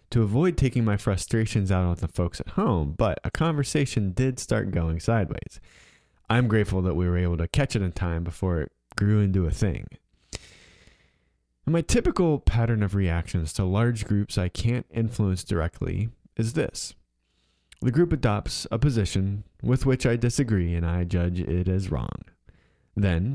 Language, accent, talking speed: English, American, 165 wpm